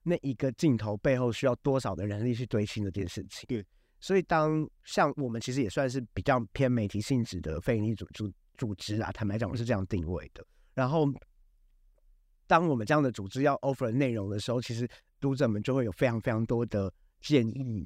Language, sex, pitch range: Chinese, male, 110-145 Hz